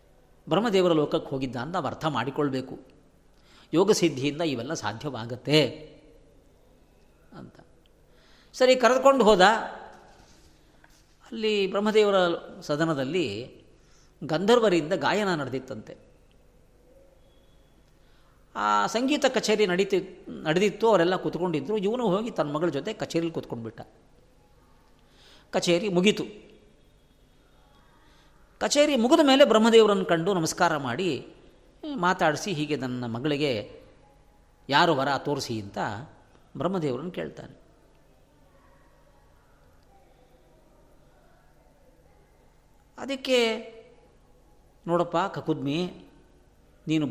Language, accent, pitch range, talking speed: Kannada, native, 140-200 Hz, 75 wpm